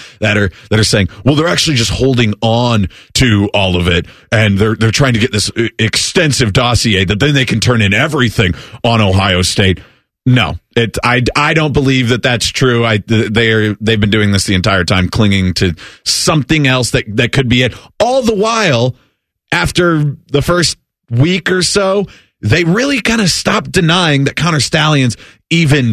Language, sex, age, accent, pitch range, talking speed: English, male, 30-49, American, 105-140 Hz, 185 wpm